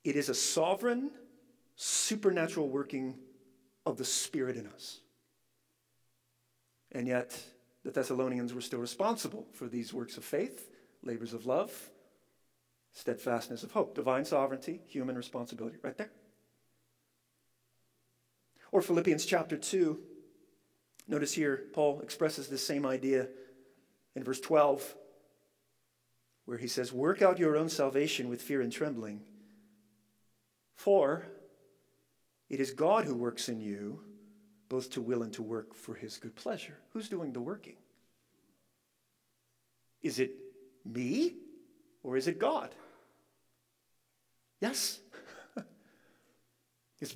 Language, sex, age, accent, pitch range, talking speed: English, male, 40-59, American, 125-180 Hz, 115 wpm